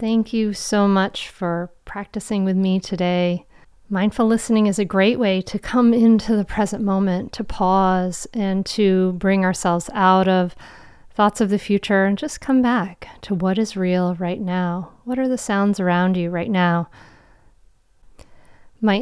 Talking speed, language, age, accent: 165 wpm, English, 40-59, American